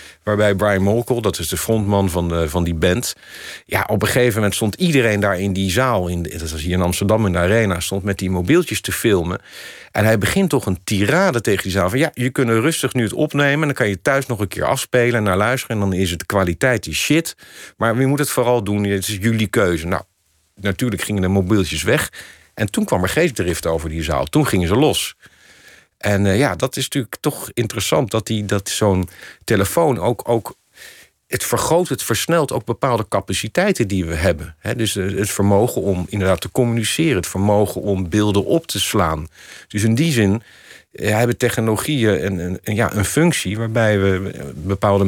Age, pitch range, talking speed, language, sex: 50-69, 95-120 Hz, 205 wpm, Dutch, male